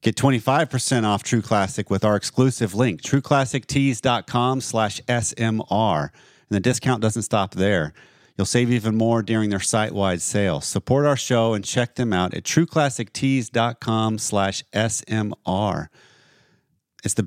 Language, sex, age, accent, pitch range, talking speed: English, male, 40-59, American, 100-125 Hz, 135 wpm